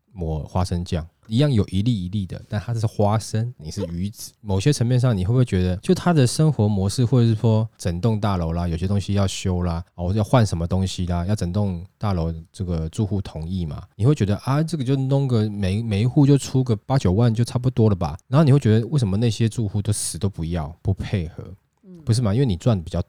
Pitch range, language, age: 90-120 Hz, Chinese, 20-39